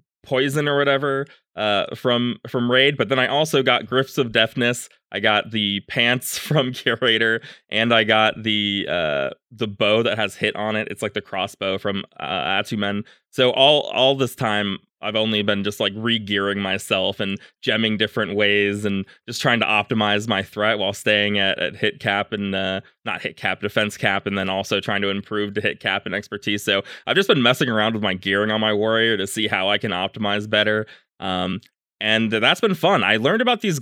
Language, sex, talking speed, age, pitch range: English, male, 200 wpm, 20-39, 100-130 Hz